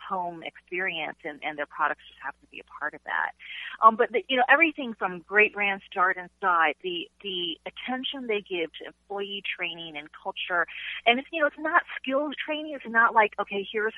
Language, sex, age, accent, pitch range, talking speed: English, female, 30-49, American, 175-230 Hz, 210 wpm